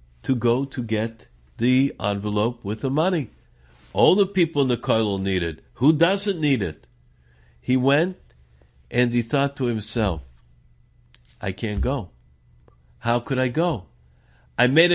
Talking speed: 150 wpm